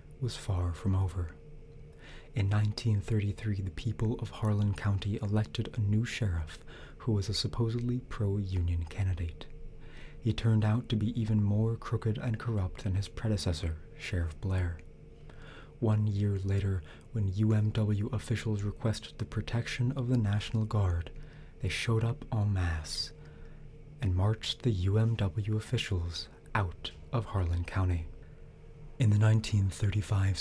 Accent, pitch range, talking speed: American, 95-115 Hz, 130 wpm